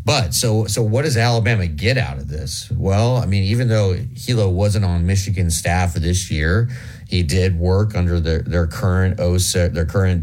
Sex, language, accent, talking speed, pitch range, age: male, English, American, 190 wpm, 80-100 Hz, 50-69